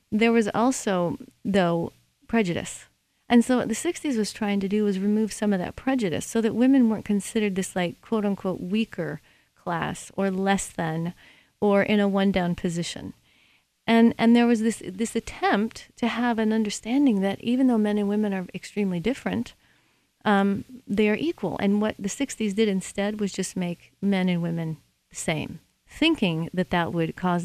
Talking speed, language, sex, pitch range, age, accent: 180 wpm, English, female, 185-230 Hz, 40-59, American